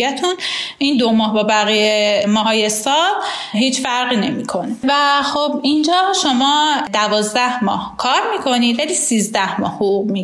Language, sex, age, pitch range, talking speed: Persian, female, 10-29, 220-300 Hz, 145 wpm